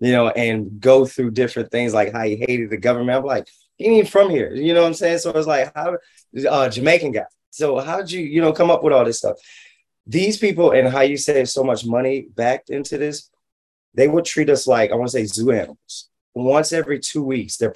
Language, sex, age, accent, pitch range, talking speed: English, male, 20-39, American, 110-155 Hz, 245 wpm